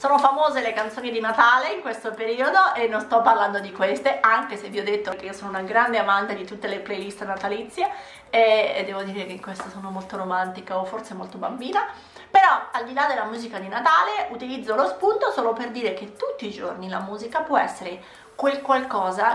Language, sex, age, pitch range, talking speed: Italian, female, 30-49, 195-250 Hz, 210 wpm